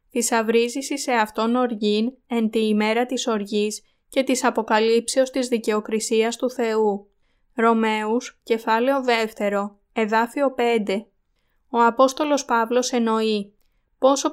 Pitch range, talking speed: 220-250 Hz, 110 wpm